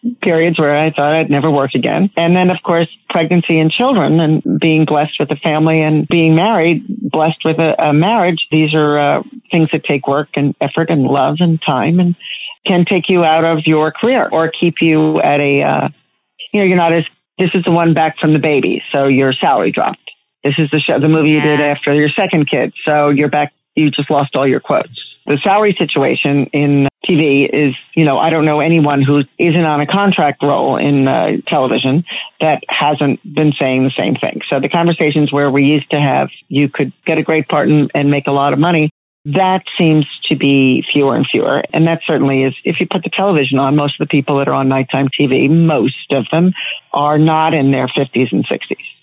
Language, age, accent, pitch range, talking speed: English, 40-59, American, 140-165 Hz, 220 wpm